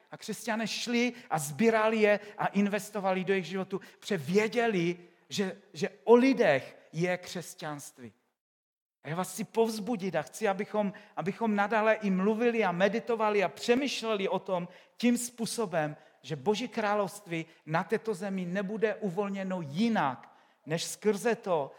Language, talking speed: Czech, 140 wpm